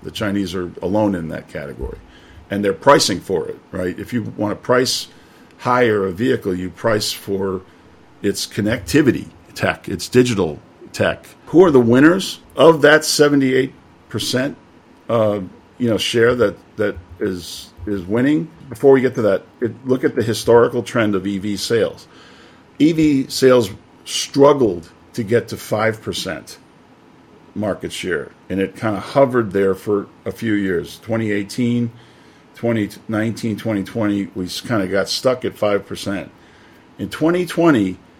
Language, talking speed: English, 145 wpm